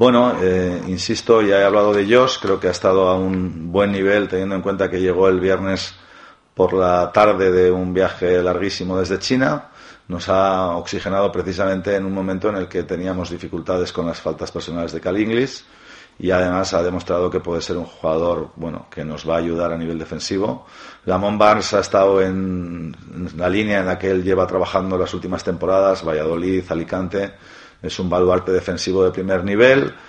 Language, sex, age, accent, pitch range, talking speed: Spanish, male, 40-59, Spanish, 90-100 Hz, 185 wpm